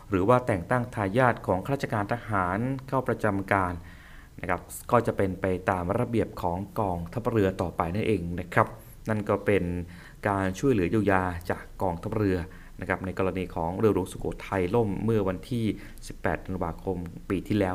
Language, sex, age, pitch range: Thai, male, 20-39, 95-120 Hz